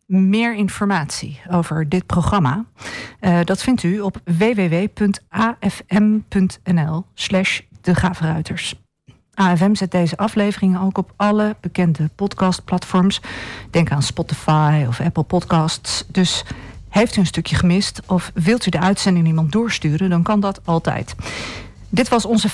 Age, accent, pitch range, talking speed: 40-59, Dutch, 165-205 Hz, 125 wpm